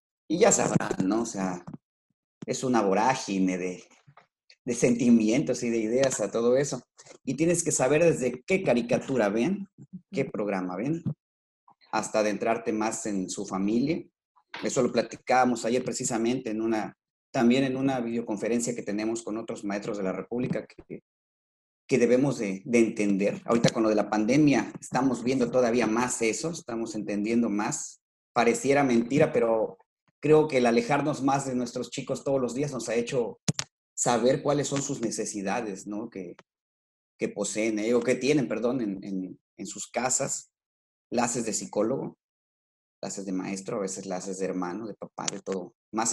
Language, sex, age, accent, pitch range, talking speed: Spanish, male, 40-59, Mexican, 105-145 Hz, 165 wpm